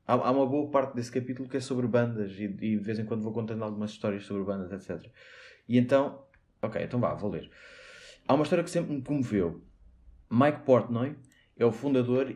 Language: Portuguese